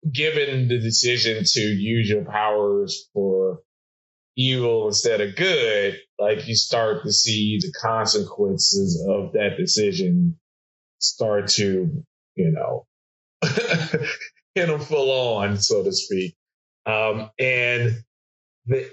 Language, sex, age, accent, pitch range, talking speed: English, male, 30-49, American, 105-140 Hz, 115 wpm